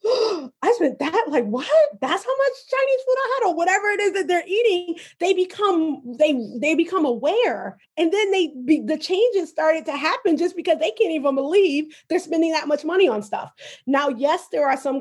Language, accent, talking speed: English, American, 205 wpm